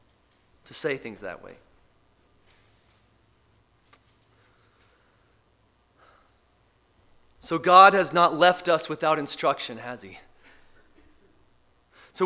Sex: male